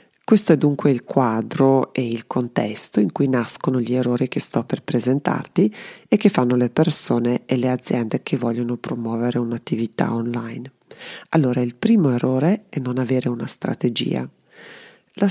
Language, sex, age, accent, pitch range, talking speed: Italian, female, 40-59, native, 120-160 Hz, 155 wpm